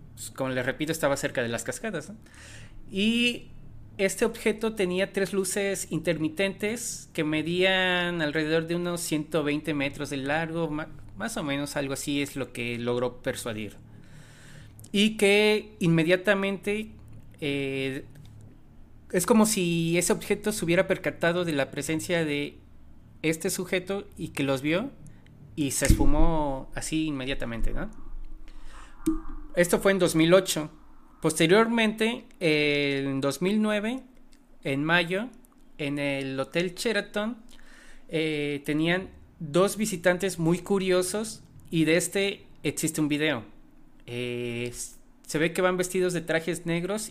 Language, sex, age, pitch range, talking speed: Spanish, male, 30-49, 140-195 Hz, 125 wpm